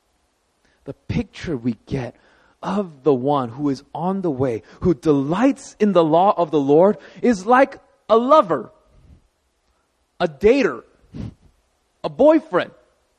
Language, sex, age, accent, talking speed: English, male, 20-39, American, 125 wpm